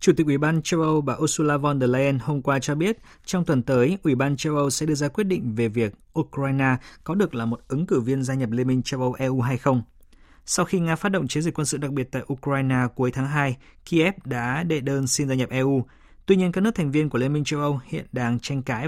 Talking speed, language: 270 wpm, Vietnamese